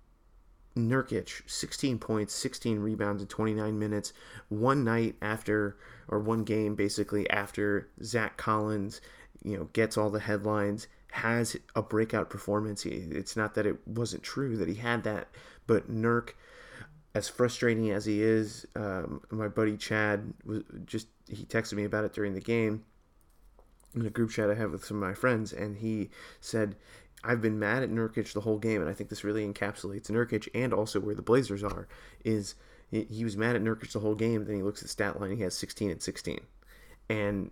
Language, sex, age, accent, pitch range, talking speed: English, male, 30-49, American, 100-110 Hz, 185 wpm